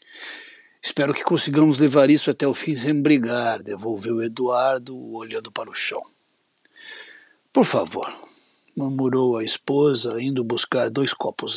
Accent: Brazilian